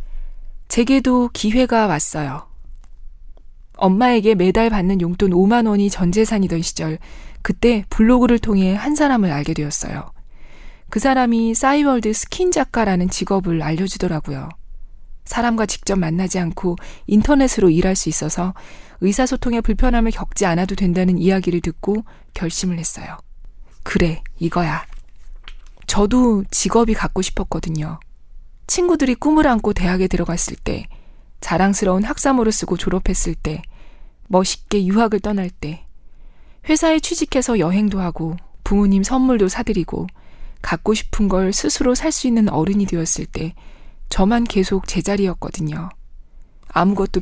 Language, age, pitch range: Korean, 20-39, 175-230 Hz